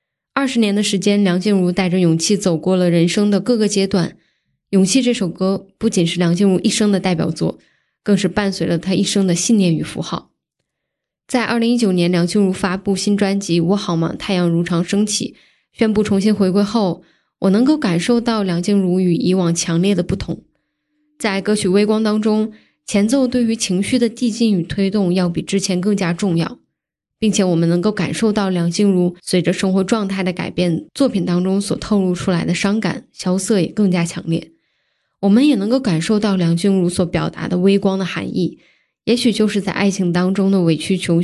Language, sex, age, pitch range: Chinese, female, 10-29, 175-210 Hz